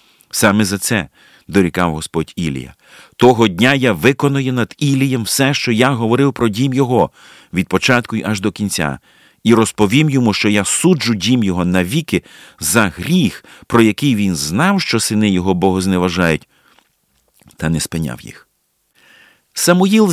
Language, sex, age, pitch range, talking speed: Ukrainian, male, 50-69, 90-125 Hz, 150 wpm